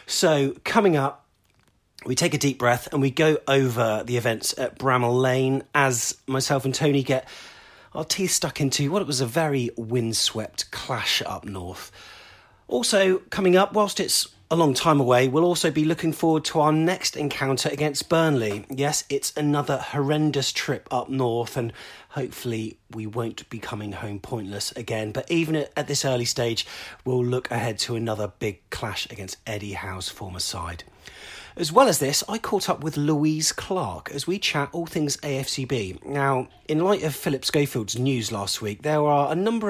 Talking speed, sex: 180 wpm, male